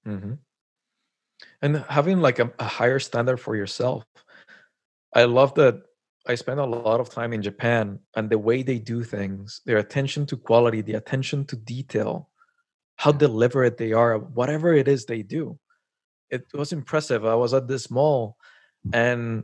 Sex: male